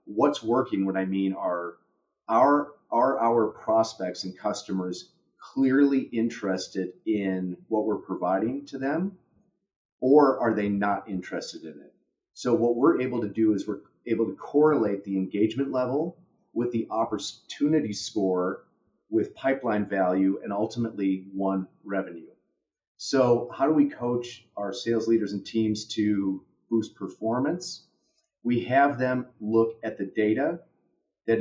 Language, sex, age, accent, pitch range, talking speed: English, male, 30-49, American, 100-120 Hz, 140 wpm